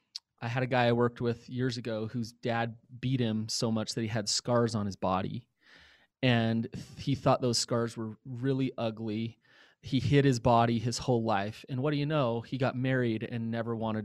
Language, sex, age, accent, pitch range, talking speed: English, male, 30-49, American, 115-140 Hz, 205 wpm